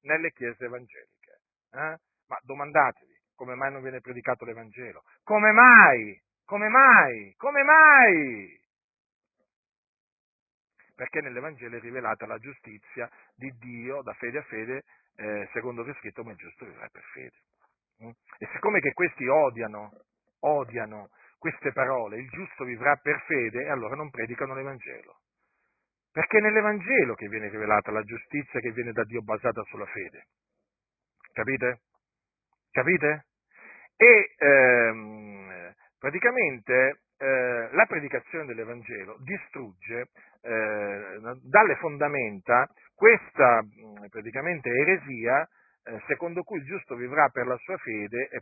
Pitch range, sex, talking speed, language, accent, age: 115-155 Hz, male, 125 wpm, Italian, native, 40-59